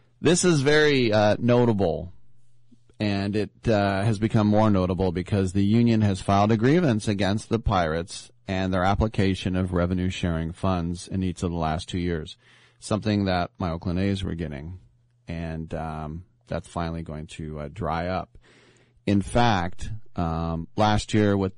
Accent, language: American, English